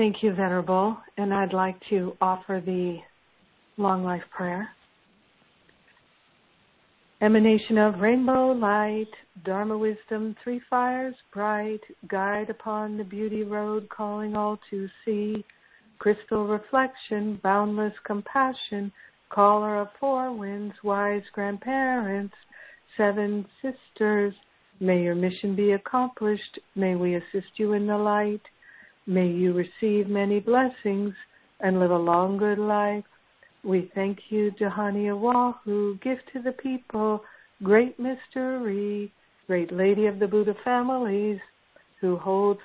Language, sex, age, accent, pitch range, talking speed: English, female, 60-79, American, 195-215 Hz, 120 wpm